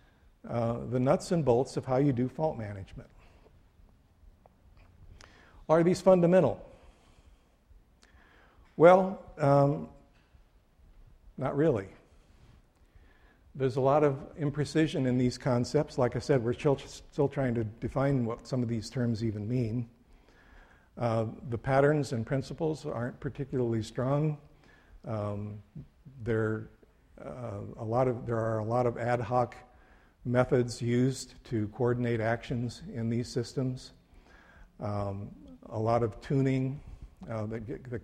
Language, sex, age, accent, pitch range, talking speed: English, male, 60-79, American, 105-135 Hz, 125 wpm